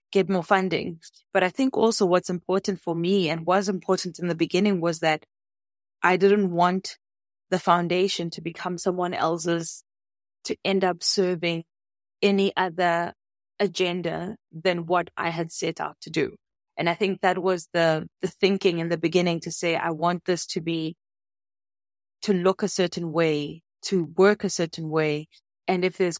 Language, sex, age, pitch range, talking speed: English, female, 20-39, 165-185 Hz, 170 wpm